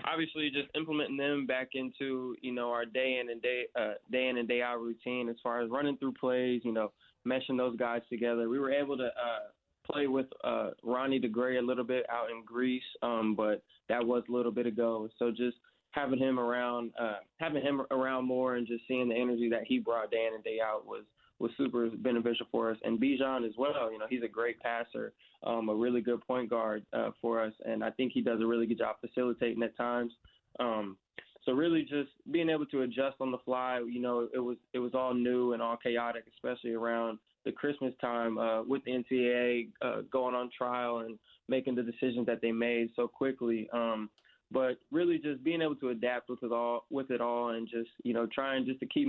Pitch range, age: 115-130 Hz, 20-39